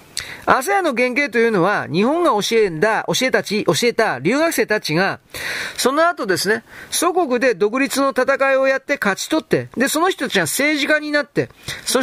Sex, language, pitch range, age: male, Japanese, 210-300 Hz, 40-59